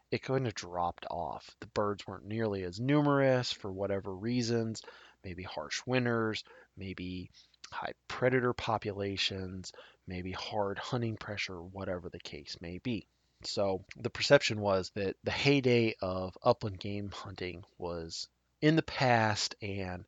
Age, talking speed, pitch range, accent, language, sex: 20-39, 135 wpm, 95-120 Hz, American, English, male